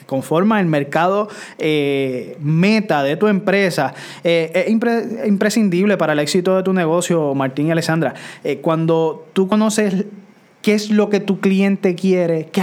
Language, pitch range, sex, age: Spanish, 160-205 Hz, male, 20-39